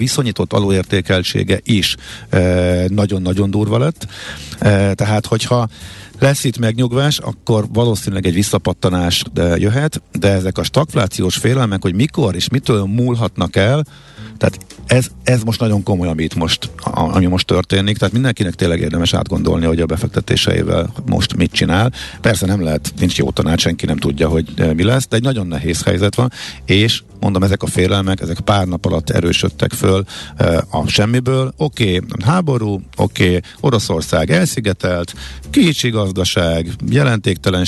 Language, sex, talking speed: Hungarian, male, 140 wpm